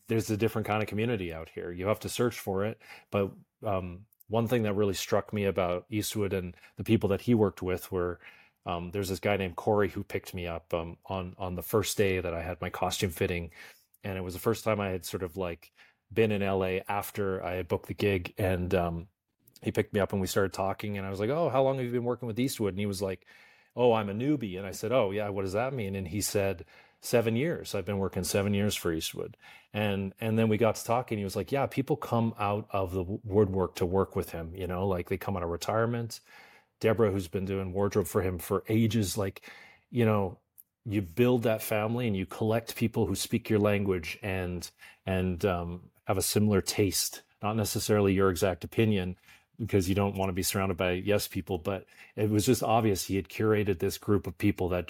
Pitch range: 95-110 Hz